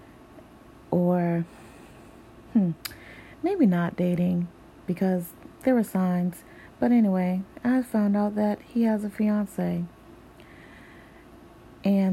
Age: 30-49